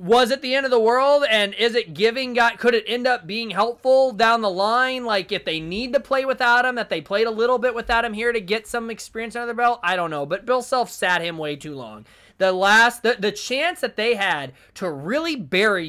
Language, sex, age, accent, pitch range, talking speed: English, male, 20-39, American, 170-240 Hz, 255 wpm